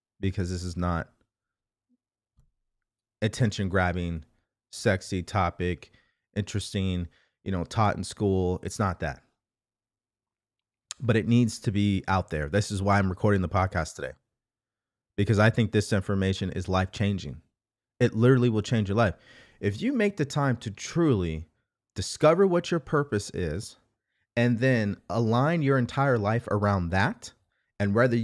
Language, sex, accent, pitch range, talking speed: English, male, American, 100-130 Hz, 145 wpm